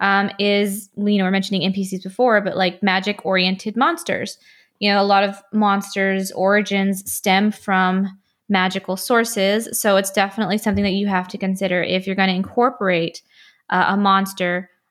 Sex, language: female, English